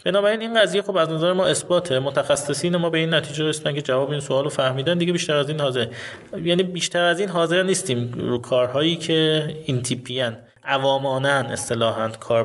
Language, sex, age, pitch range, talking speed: Persian, male, 30-49, 120-155 Hz, 180 wpm